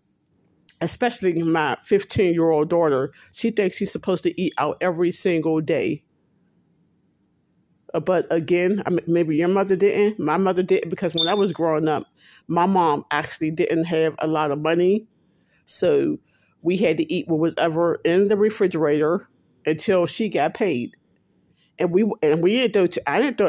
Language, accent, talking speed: English, American, 160 wpm